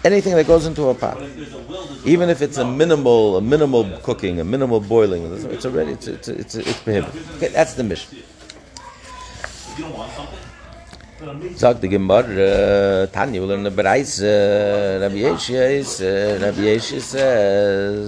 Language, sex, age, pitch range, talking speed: English, male, 60-79, 100-130 Hz, 105 wpm